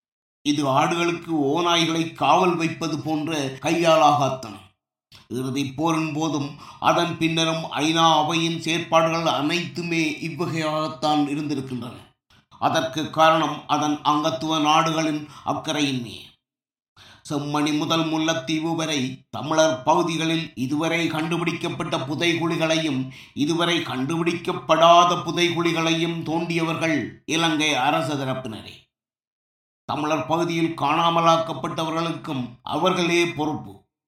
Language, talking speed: Tamil, 75 wpm